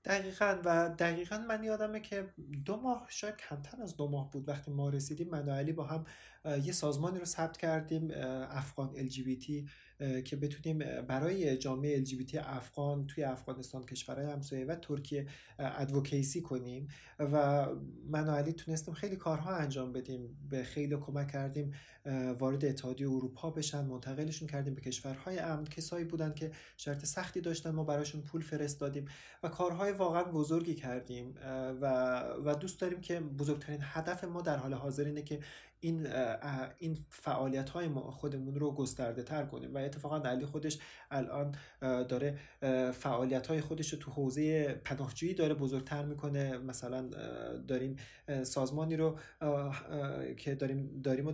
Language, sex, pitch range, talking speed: Persian, male, 135-155 Hz, 140 wpm